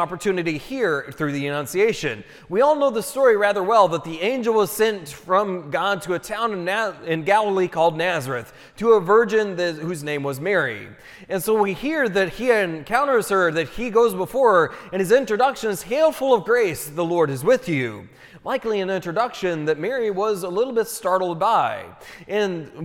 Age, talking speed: 30-49, 190 wpm